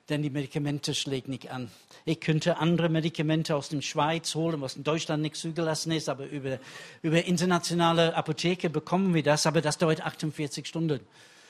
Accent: German